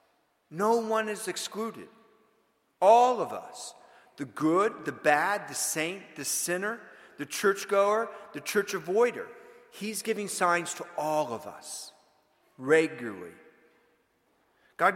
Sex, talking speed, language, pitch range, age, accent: male, 115 wpm, English, 150-200 Hz, 50-69, American